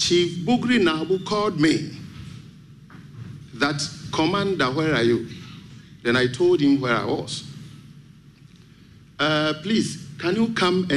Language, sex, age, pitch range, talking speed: English, male, 50-69, 135-165 Hz, 115 wpm